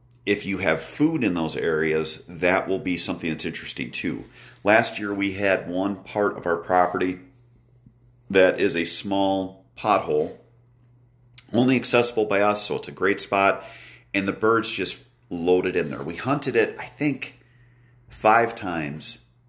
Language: English